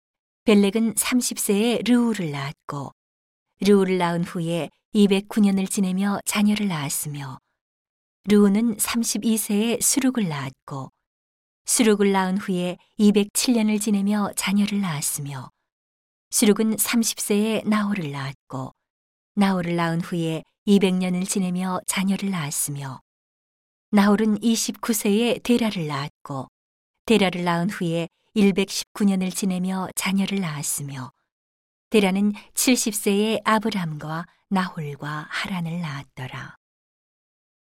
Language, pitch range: Korean, 160-210 Hz